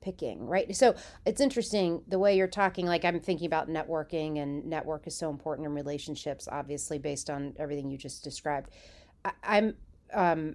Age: 30-49